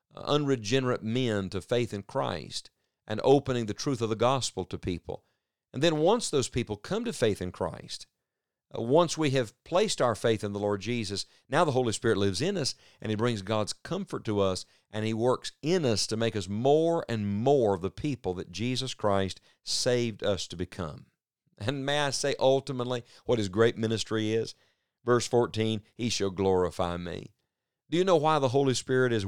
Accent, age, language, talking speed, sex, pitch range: American, 50-69, English, 195 wpm, male, 105-140 Hz